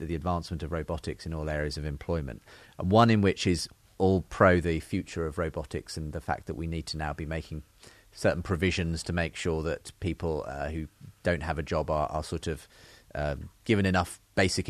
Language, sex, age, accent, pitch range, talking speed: English, male, 30-49, British, 80-95 Hz, 210 wpm